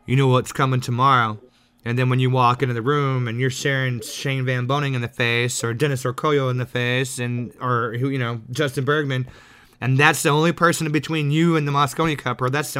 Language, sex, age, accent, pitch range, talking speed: English, male, 20-39, American, 125-145 Hz, 230 wpm